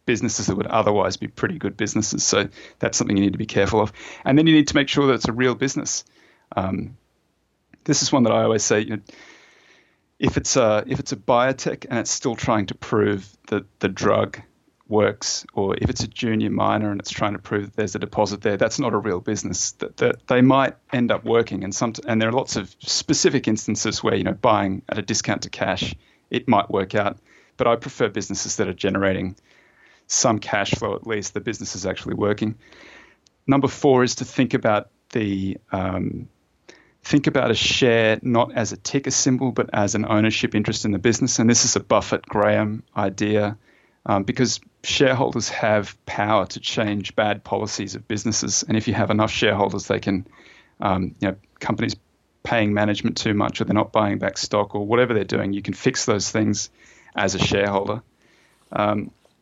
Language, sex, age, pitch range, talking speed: English, male, 30-49, 100-125 Hz, 200 wpm